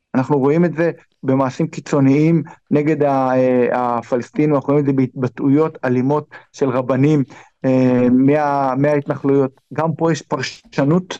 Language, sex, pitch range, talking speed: Hebrew, male, 130-155 Hz, 120 wpm